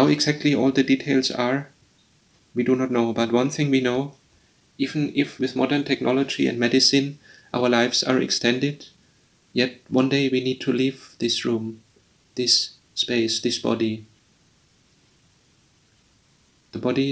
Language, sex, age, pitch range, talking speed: English, male, 30-49, 120-135 Hz, 140 wpm